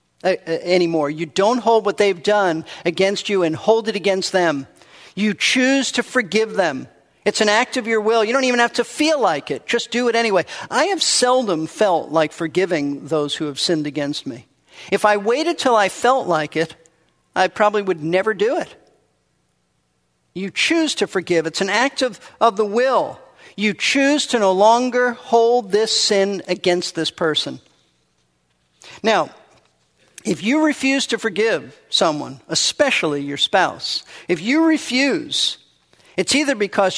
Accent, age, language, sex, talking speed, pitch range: American, 50-69, English, male, 165 wpm, 175-235 Hz